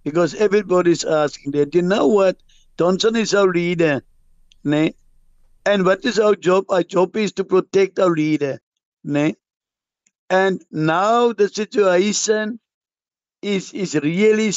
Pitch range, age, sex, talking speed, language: 185-220 Hz, 60-79, male, 130 wpm, English